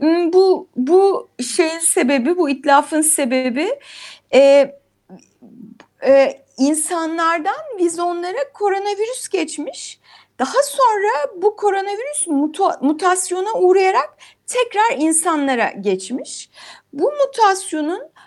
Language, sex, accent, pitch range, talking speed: Turkish, female, native, 270-360 Hz, 85 wpm